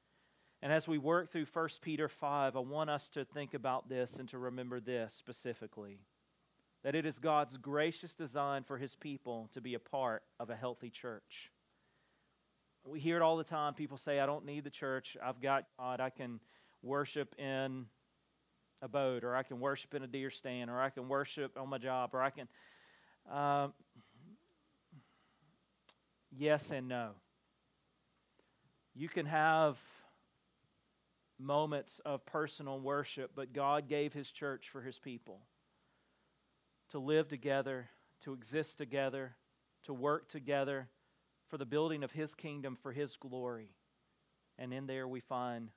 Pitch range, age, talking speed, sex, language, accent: 130-155 Hz, 40-59, 155 wpm, male, English, American